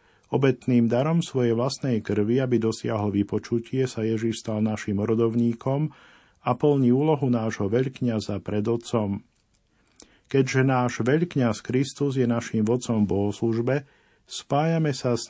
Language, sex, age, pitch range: Slovak, male, 50-69, 110-135 Hz